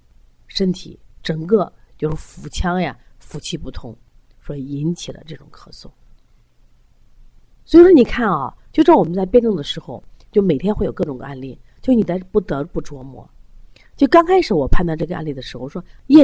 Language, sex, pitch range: Chinese, female, 145-215 Hz